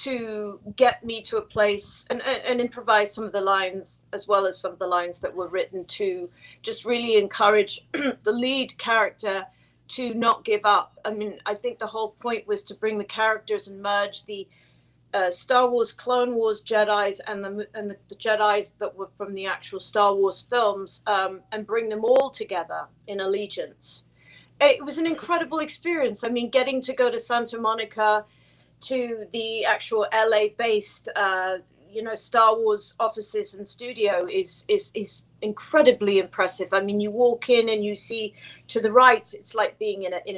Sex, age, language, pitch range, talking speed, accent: female, 40-59, English, 200-245 Hz, 185 wpm, British